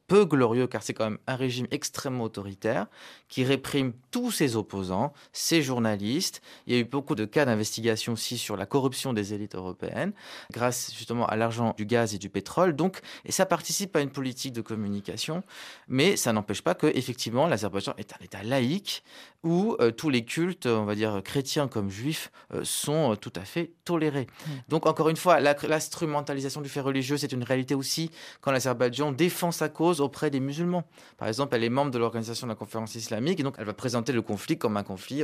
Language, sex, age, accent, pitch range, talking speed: French, male, 30-49, French, 110-150 Hz, 210 wpm